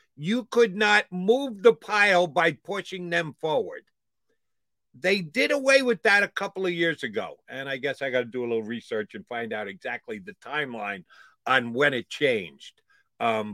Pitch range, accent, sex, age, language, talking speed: 145-190 Hz, American, male, 50-69, English, 180 wpm